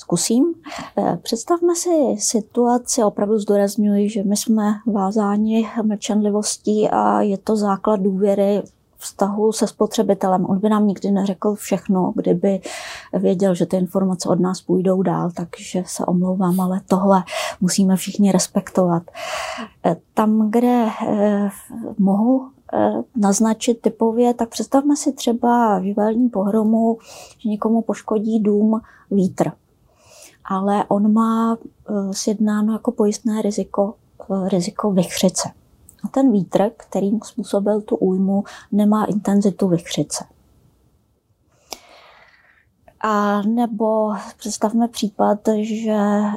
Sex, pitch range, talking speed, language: female, 195-225 Hz, 110 wpm, Czech